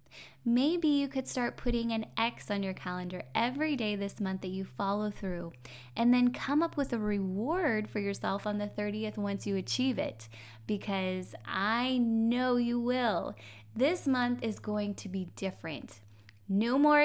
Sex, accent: female, American